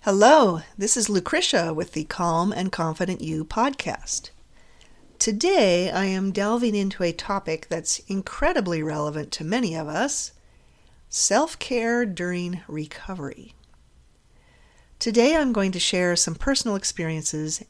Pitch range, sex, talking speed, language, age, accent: 160-210 Hz, female, 120 wpm, English, 40-59, American